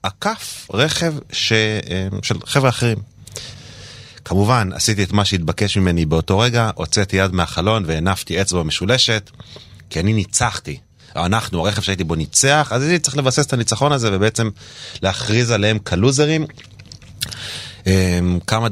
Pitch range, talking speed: 90-120 Hz, 130 wpm